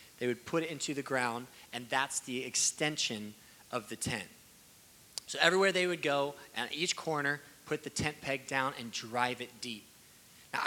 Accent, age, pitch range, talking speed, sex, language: American, 20-39, 115-135 Hz, 180 wpm, male, English